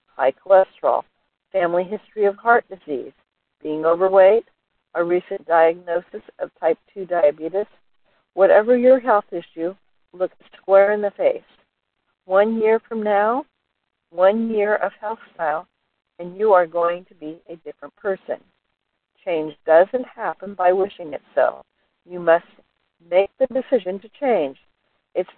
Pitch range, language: 170-205 Hz, English